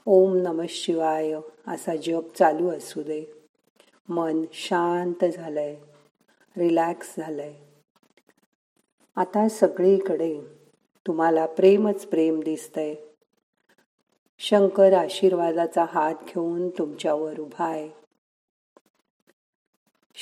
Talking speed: 75 wpm